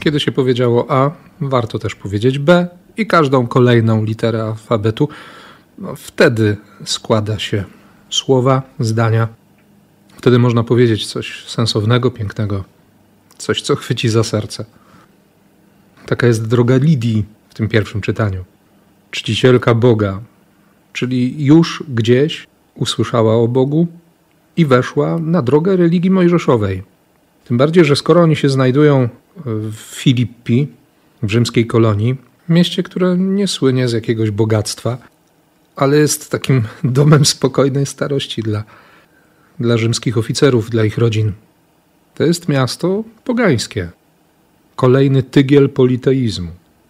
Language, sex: Polish, male